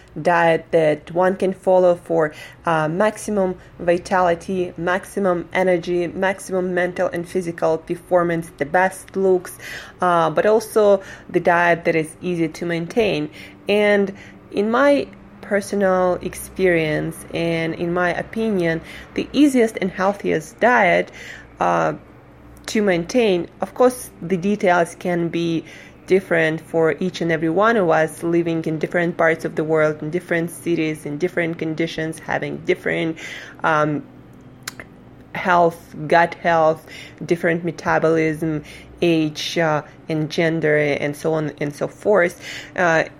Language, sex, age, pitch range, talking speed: English, female, 20-39, 160-185 Hz, 130 wpm